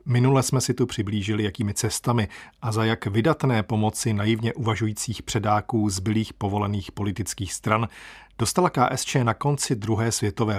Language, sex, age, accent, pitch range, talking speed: Czech, male, 40-59, native, 105-130 Hz, 140 wpm